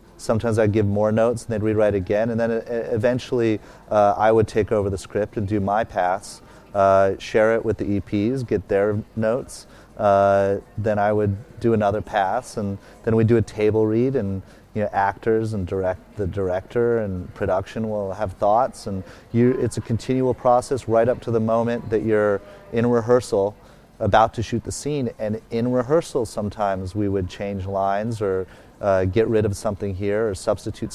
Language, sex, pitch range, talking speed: English, male, 100-120 Hz, 185 wpm